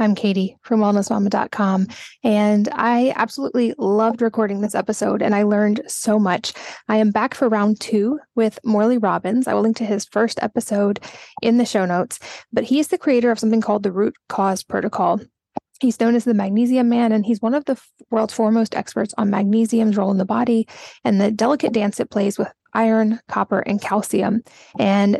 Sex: female